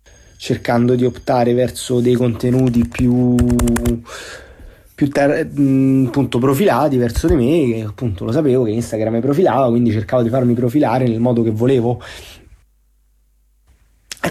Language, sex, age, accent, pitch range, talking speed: Italian, male, 30-49, native, 120-140 Hz, 135 wpm